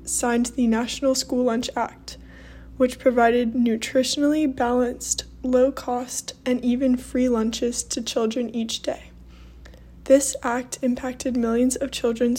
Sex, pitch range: female, 235-260 Hz